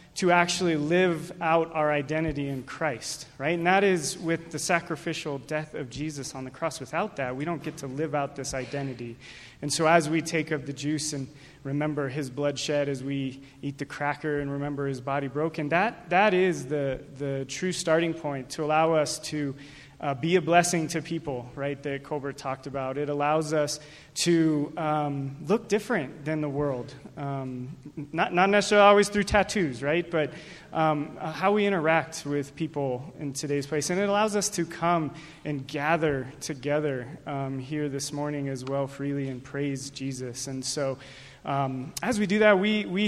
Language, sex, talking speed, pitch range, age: English, male, 185 wpm, 145-180 Hz, 30-49